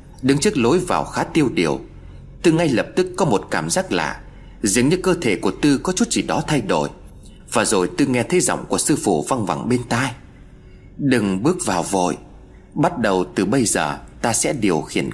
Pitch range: 115-165 Hz